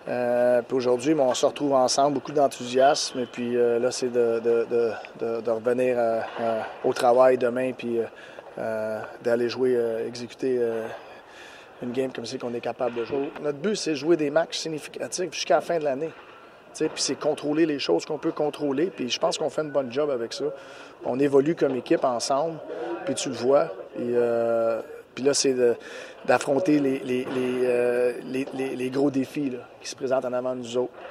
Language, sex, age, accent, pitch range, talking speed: French, male, 30-49, Canadian, 115-135 Hz, 205 wpm